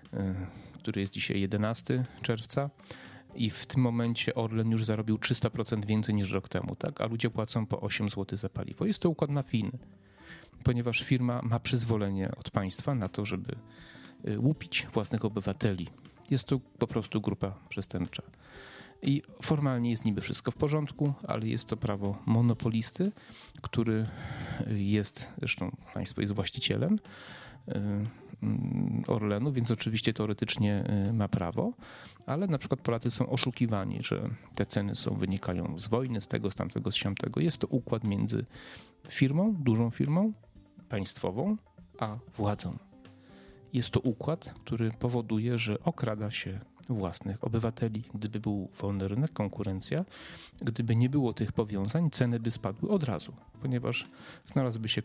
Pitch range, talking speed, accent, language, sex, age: 105-125 Hz, 140 wpm, native, Polish, male, 30-49